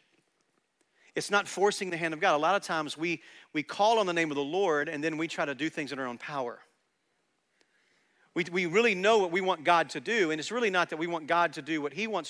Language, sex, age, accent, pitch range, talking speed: English, male, 40-59, American, 180-245 Hz, 265 wpm